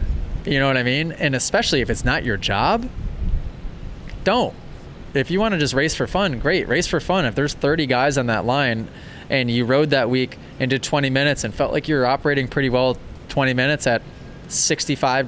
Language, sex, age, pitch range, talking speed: English, male, 20-39, 115-140 Hz, 205 wpm